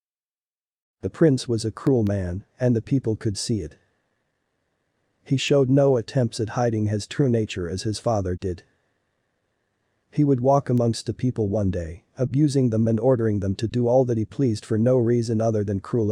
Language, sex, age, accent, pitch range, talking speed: English, male, 40-59, American, 105-125 Hz, 185 wpm